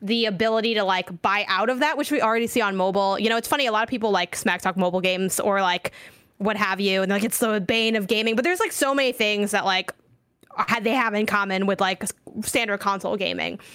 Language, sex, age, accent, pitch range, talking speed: English, female, 10-29, American, 200-240 Hz, 245 wpm